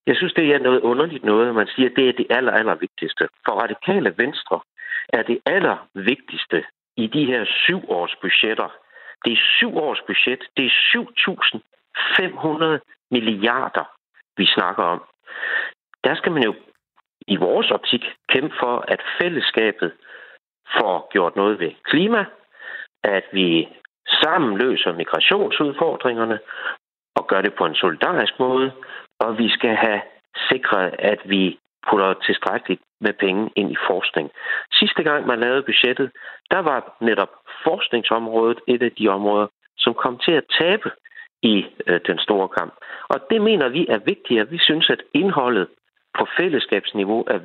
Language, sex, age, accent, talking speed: Danish, male, 60-79, native, 150 wpm